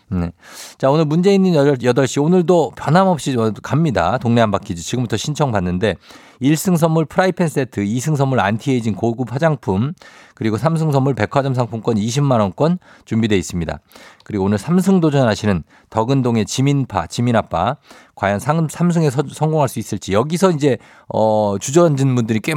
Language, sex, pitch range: Korean, male, 105-150 Hz